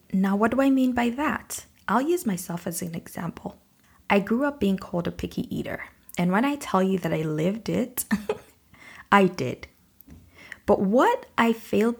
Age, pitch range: 20-39, 170-230 Hz